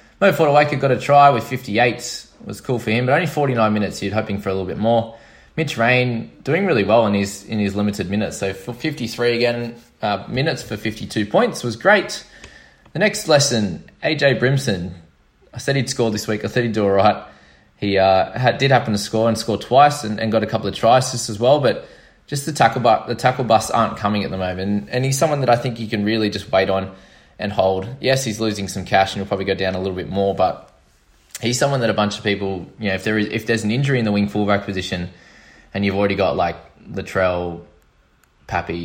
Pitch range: 95-120 Hz